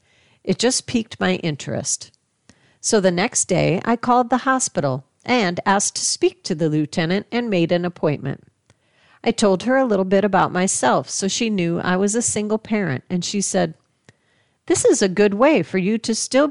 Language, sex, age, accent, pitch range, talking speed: English, female, 50-69, American, 155-215 Hz, 190 wpm